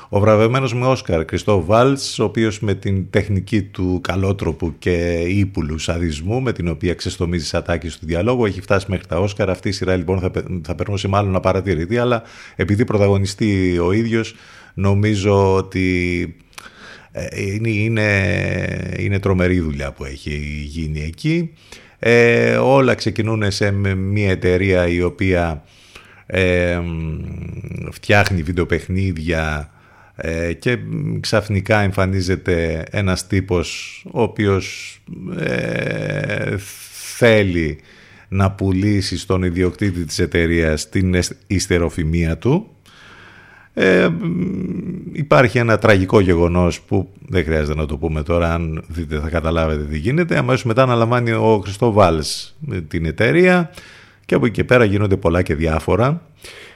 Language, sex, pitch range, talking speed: Greek, male, 85-110 Hz, 125 wpm